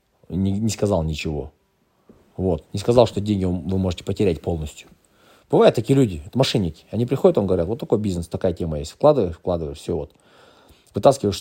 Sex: male